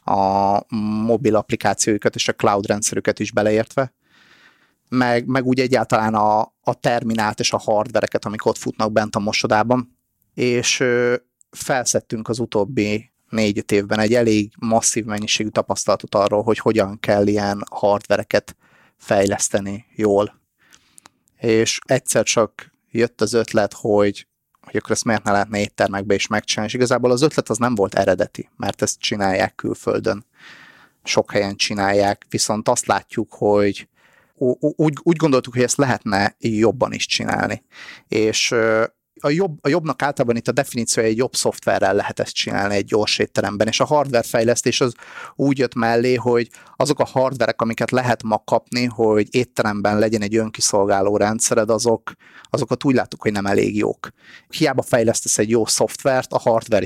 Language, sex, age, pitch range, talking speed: Hungarian, male, 30-49, 105-125 Hz, 150 wpm